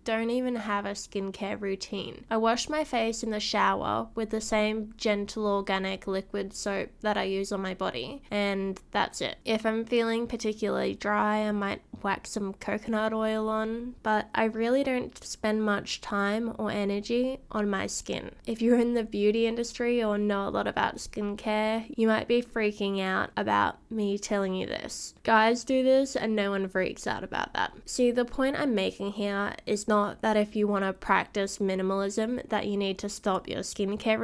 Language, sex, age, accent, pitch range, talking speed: English, female, 10-29, Australian, 205-235 Hz, 190 wpm